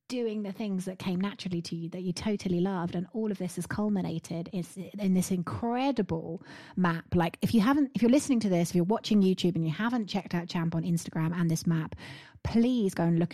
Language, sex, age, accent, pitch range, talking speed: English, female, 30-49, British, 175-230 Hz, 225 wpm